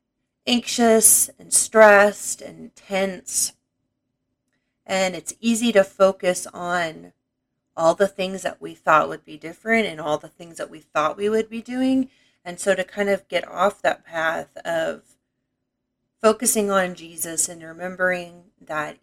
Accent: American